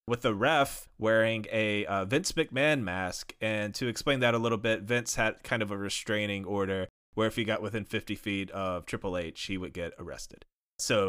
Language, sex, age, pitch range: English, male, 20-39, 105-135 Hz